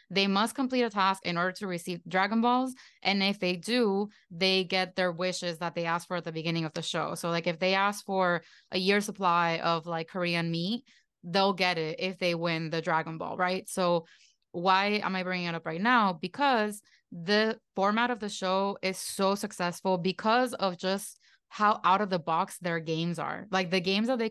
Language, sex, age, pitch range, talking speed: English, female, 20-39, 170-200 Hz, 210 wpm